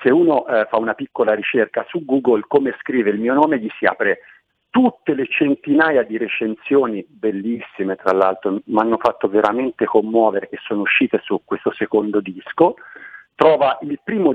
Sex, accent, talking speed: male, native, 165 wpm